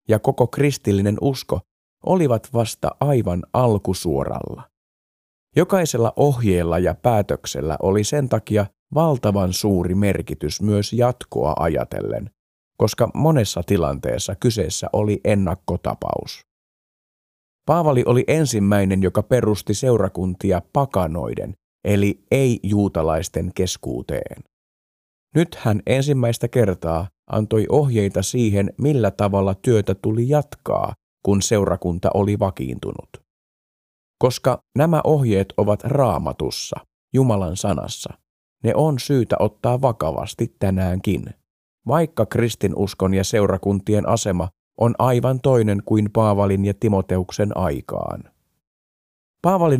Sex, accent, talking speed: male, native, 95 wpm